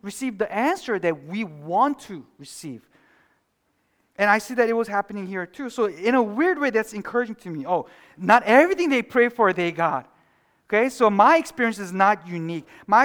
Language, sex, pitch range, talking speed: English, male, 170-240 Hz, 195 wpm